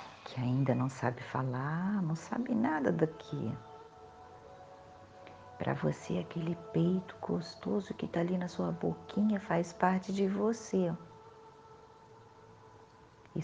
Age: 50-69